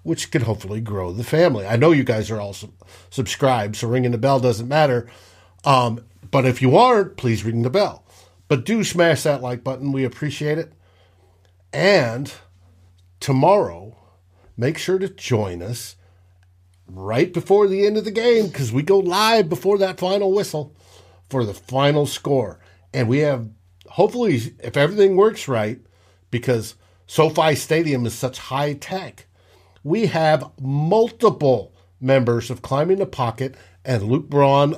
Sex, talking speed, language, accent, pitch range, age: male, 155 wpm, English, American, 95-155 Hz, 50-69